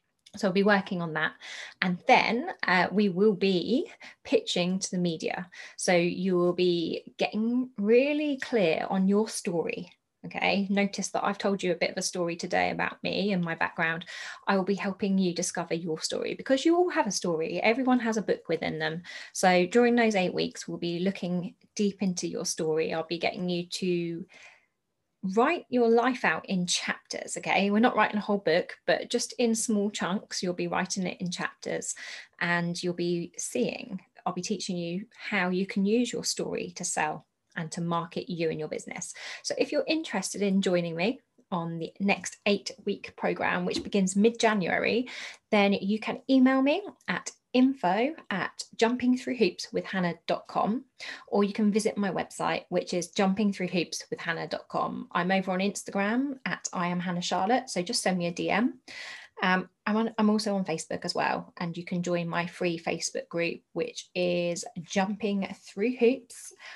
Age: 20-39